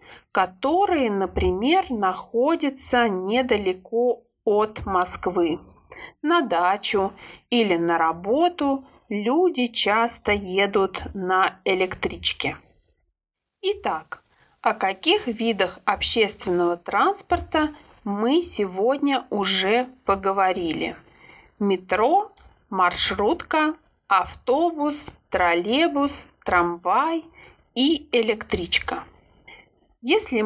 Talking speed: 65 wpm